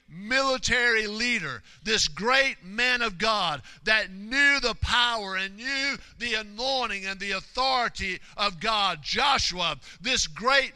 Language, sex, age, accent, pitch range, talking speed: English, male, 50-69, American, 220-265 Hz, 130 wpm